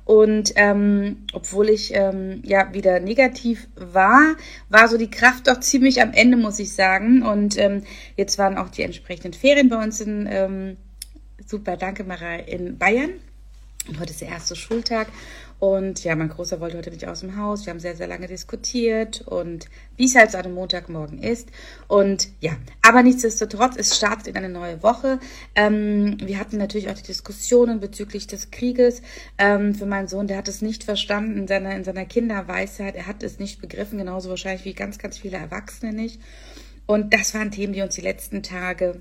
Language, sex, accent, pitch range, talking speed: German, female, German, 185-220 Hz, 190 wpm